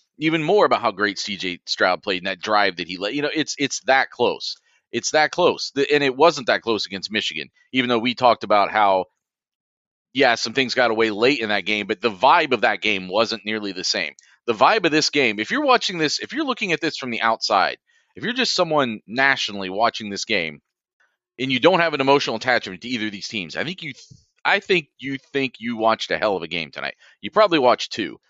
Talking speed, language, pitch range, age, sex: 240 wpm, English, 110-150 Hz, 30-49, male